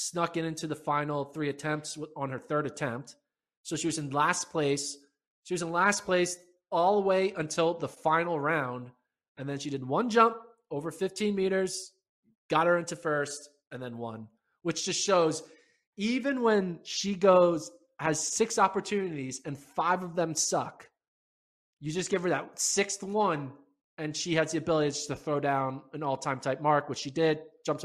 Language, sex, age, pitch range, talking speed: English, male, 20-39, 140-175 Hz, 180 wpm